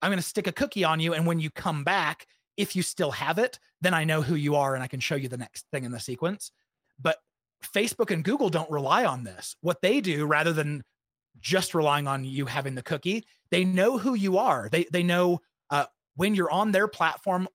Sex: male